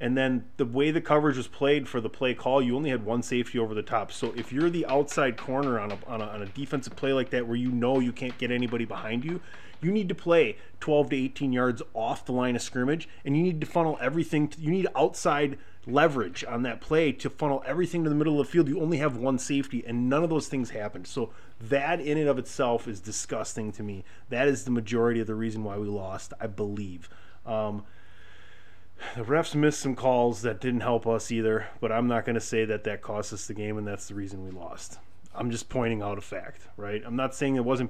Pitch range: 105-135 Hz